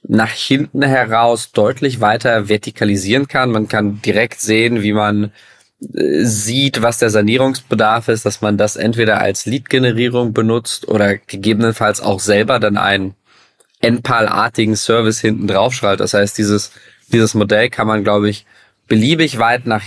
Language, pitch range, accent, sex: German, 105-120 Hz, German, male